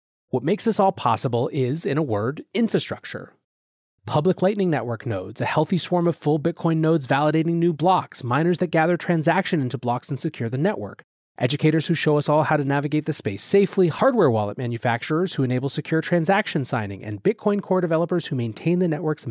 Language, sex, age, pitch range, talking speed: English, male, 30-49, 120-165 Hz, 190 wpm